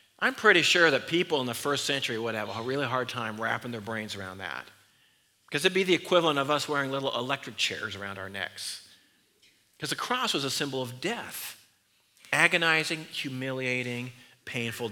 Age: 50-69